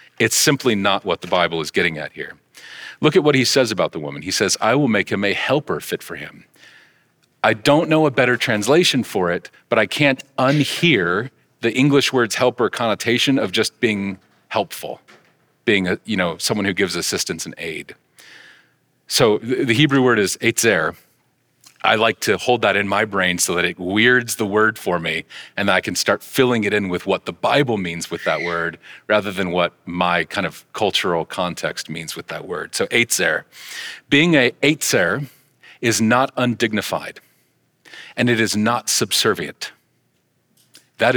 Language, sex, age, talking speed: English, male, 40-59, 180 wpm